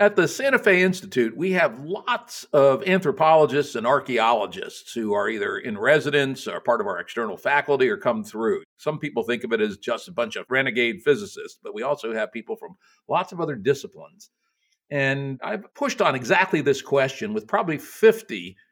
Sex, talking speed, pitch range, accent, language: male, 185 wpm, 135-205 Hz, American, English